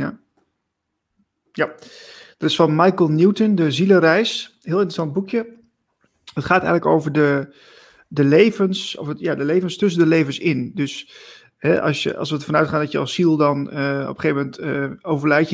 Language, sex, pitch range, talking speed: Dutch, male, 145-180 Hz, 185 wpm